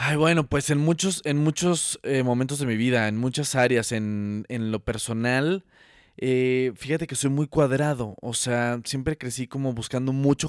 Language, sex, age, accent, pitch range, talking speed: Spanish, male, 20-39, Mexican, 115-145 Hz, 185 wpm